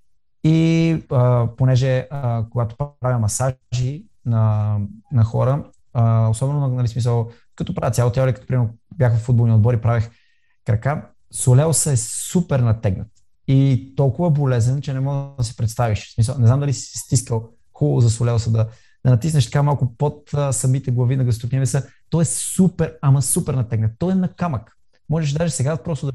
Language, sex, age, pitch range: Bulgarian, male, 20-39, 115-150 Hz